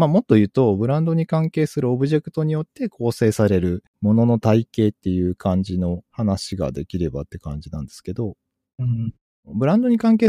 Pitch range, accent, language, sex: 85-125 Hz, native, Japanese, male